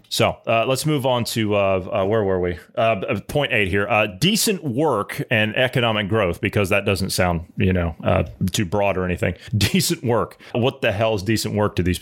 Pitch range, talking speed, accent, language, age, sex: 105-135 Hz, 210 wpm, American, English, 30-49, male